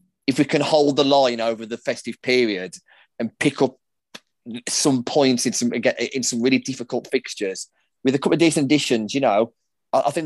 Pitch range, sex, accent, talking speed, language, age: 115-135 Hz, male, British, 185 wpm, English, 20-39